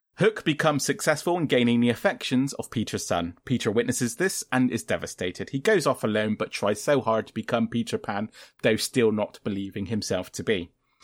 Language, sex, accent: English, male, British